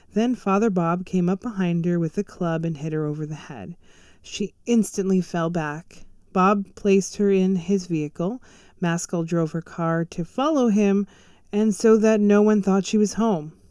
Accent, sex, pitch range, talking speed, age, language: American, female, 170-205 Hz, 185 wpm, 30-49, English